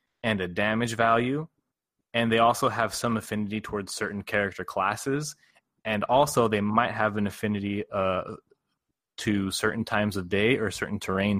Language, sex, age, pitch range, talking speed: English, male, 20-39, 100-120 Hz, 160 wpm